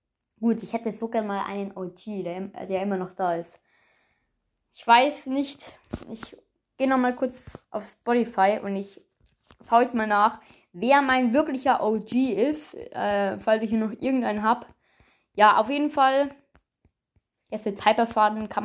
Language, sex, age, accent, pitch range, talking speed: German, female, 20-39, German, 200-260 Hz, 155 wpm